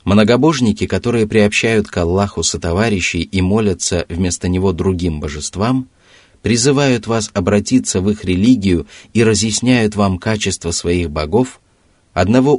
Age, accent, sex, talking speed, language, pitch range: 30-49, native, male, 120 wpm, Russian, 90-115 Hz